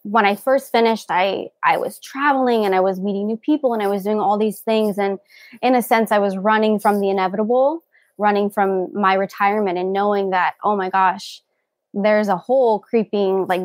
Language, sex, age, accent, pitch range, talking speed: English, female, 20-39, American, 195-245 Hz, 200 wpm